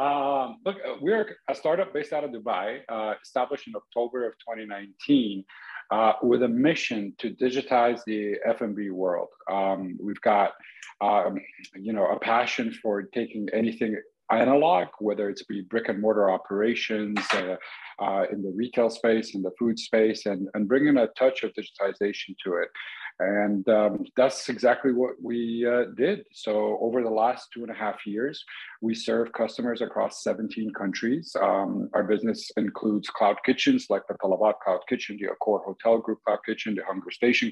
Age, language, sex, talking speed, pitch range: 50-69, English, male, 170 wpm, 105-120 Hz